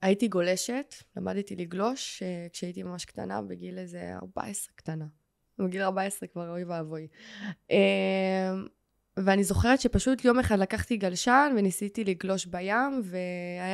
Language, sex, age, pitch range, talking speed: Hebrew, female, 20-39, 190-270 Hz, 125 wpm